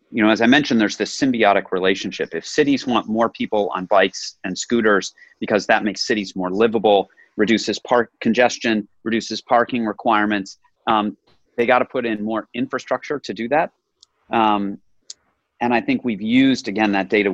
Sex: male